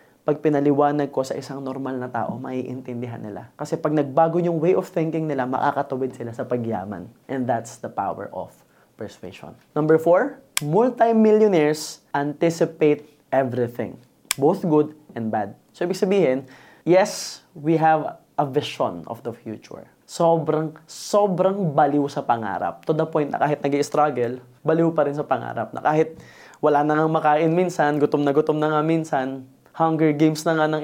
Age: 20-39